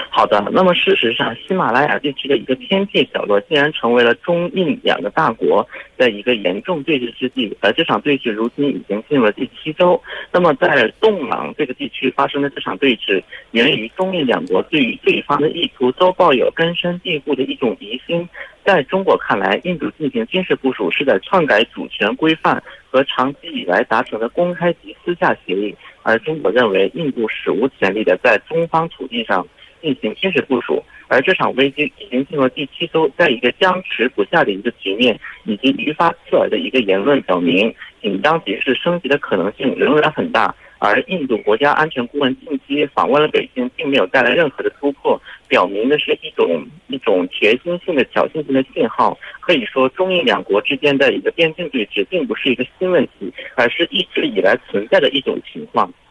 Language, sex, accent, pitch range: Korean, male, Chinese, 130-180 Hz